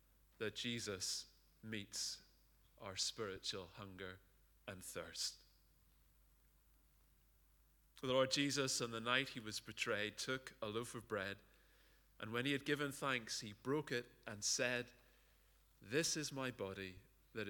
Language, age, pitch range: English, 30-49, 105-130 Hz